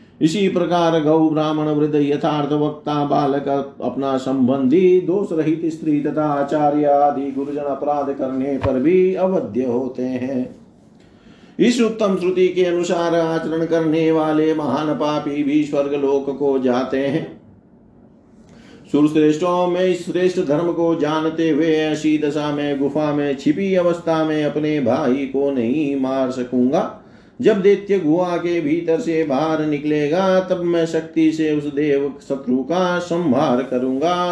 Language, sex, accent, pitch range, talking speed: Hindi, male, native, 140-175 Hz, 135 wpm